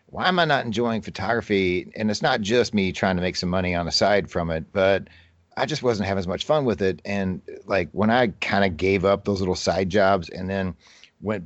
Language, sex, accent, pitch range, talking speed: English, male, American, 90-110 Hz, 240 wpm